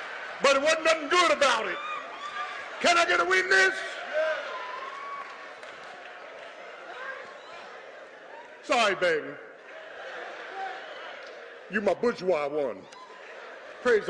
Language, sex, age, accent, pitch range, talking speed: English, male, 50-69, American, 260-415 Hz, 80 wpm